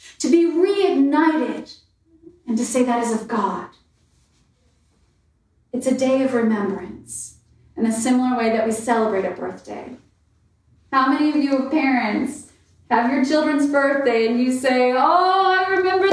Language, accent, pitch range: English, American, 250-330 Hz